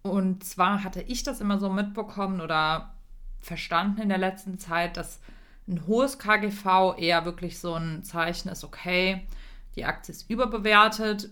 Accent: German